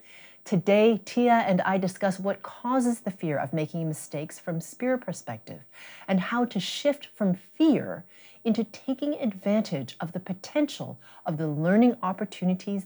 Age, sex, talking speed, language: 40-59, female, 145 wpm, English